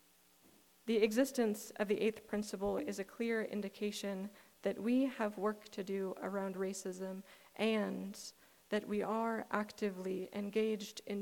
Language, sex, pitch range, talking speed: English, female, 195-225 Hz, 135 wpm